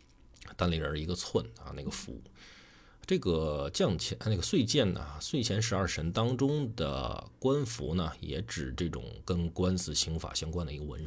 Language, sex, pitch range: Chinese, male, 75-110 Hz